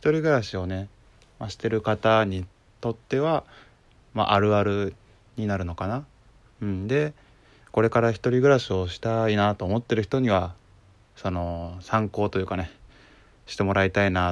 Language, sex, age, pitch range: Japanese, male, 20-39, 95-115 Hz